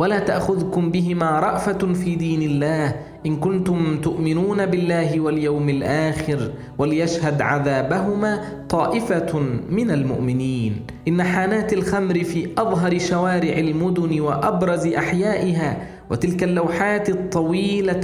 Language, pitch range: Arabic, 150-180 Hz